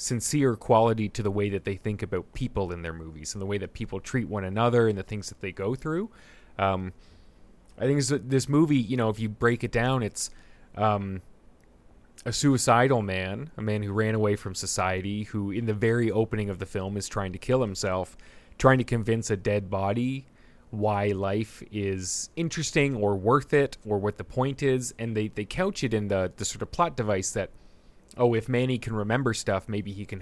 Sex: male